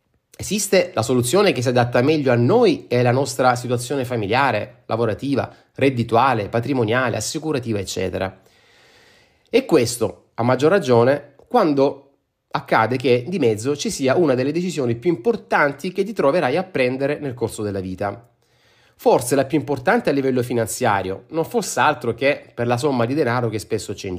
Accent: native